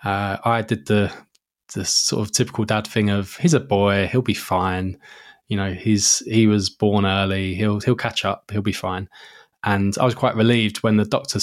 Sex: male